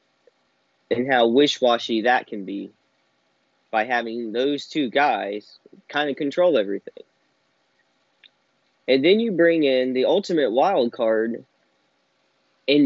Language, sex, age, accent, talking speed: English, male, 30-49, American, 115 wpm